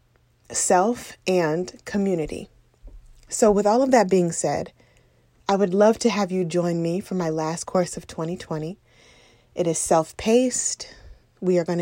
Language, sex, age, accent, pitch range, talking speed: English, female, 20-39, American, 170-220 Hz, 150 wpm